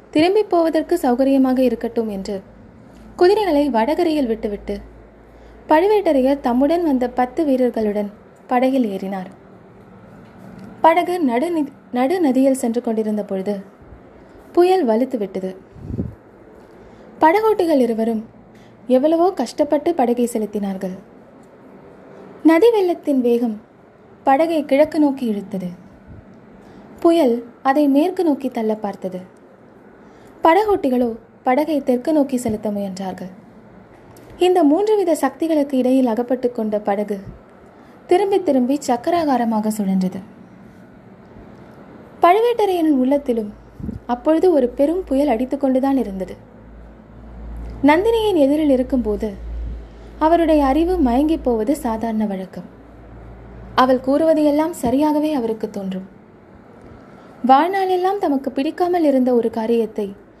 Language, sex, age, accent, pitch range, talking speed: Tamil, female, 20-39, native, 220-310 Hz, 90 wpm